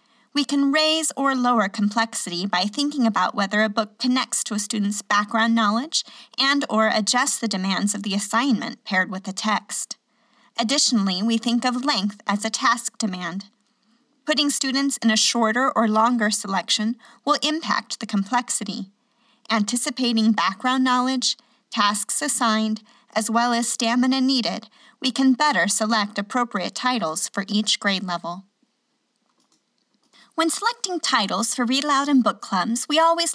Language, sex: English, female